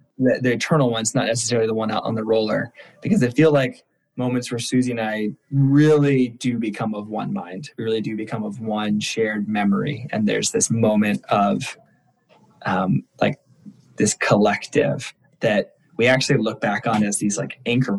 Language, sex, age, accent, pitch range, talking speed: English, male, 20-39, American, 110-130 Hz, 180 wpm